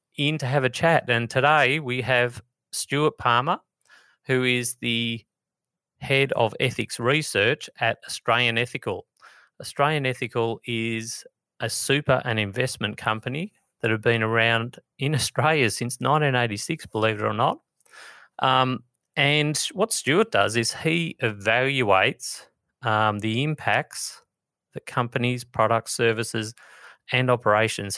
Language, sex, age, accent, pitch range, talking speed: English, male, 30-49, Australian, 110-135 Hz, 125 wpm